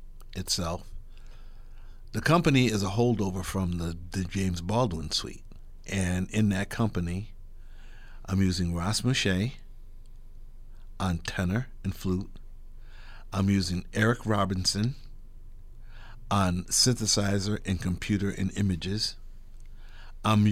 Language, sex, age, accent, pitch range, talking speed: English, male, 50-69, American, 95-110 Hz, 100 wpm